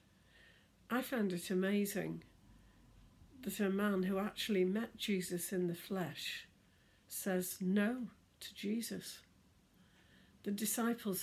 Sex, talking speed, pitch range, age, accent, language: female, 105 wpm, 145-200 Hz, 60-79, British, English